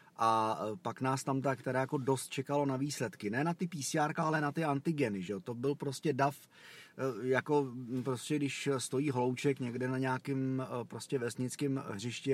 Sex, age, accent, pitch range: male, 30-49, native, 120-150 Hz